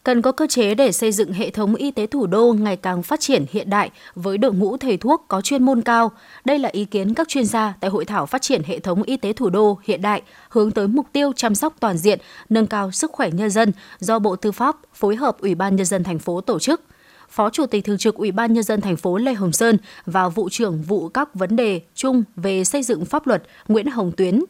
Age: 20-39